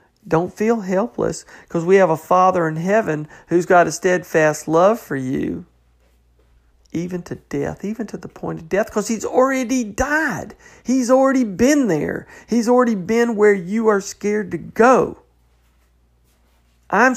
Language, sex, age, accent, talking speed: English, male, 50-69, American, 155 wpm